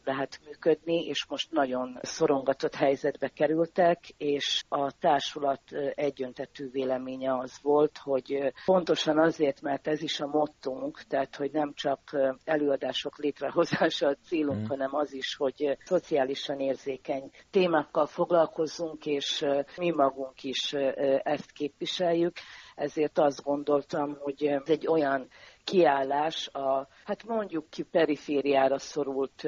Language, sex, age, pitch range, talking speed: Hungarian, female, 50-69, 135-155 Hz, 120 wpm